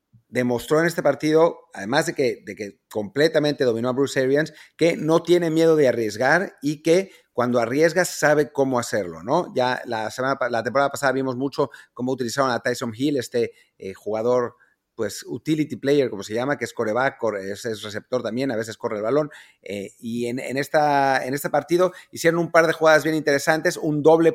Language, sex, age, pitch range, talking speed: Spanish, male, 40-59, 130-165 Hz, 190 wpm